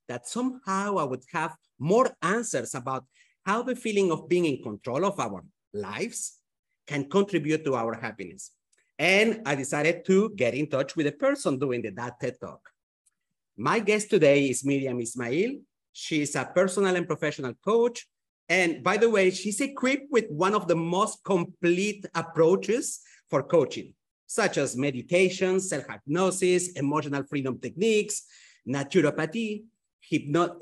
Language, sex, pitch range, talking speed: English, male, 140-200 Hz, 145 wpm